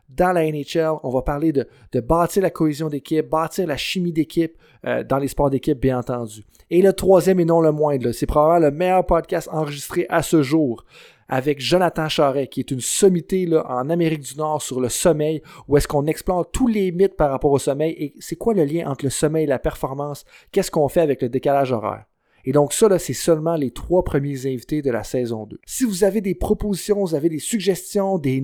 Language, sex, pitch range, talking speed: French, male, 140-175 Hz, 230 wpm